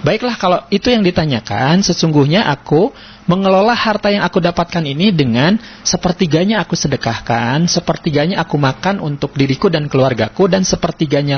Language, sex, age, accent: Indonesian, male, 40-59, native